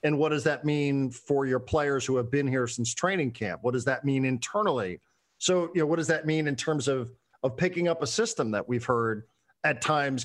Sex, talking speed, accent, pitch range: male, 235 wpm, American, 130-160 Hz